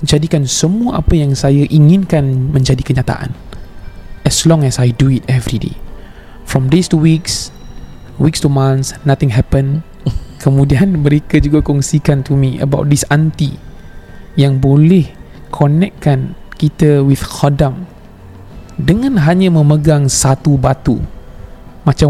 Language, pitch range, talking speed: Malay, 130-155 Hz, 125 wpm